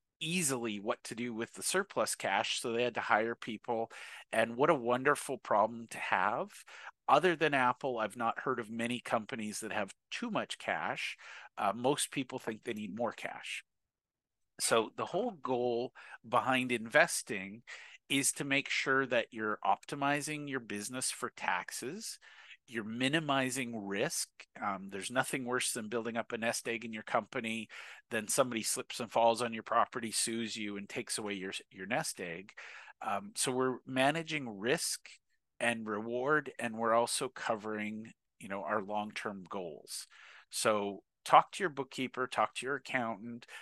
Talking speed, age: 160 wpm, 50-69